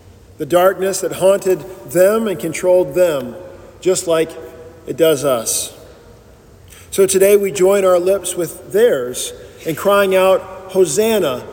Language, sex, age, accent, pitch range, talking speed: English, male, 40-59, American, 165-200 Hz, 130 wpm